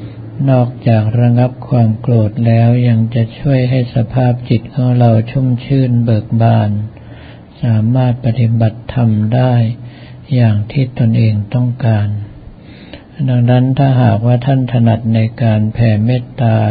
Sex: male